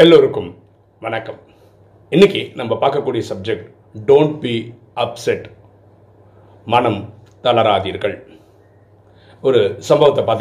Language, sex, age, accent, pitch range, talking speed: Tamil, male, 40-59, native, 95-115 Hz, 80 wpm